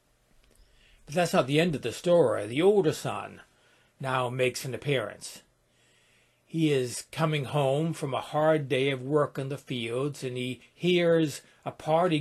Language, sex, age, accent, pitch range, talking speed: English, male, 60-79, American, 130-170 Hz, 155 wpm